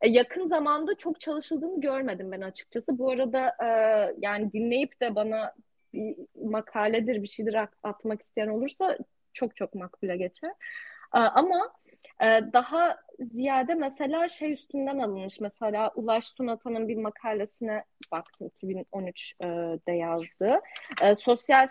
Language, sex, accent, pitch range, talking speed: Turkish, female, native, 195-245 Hz, 110 wpm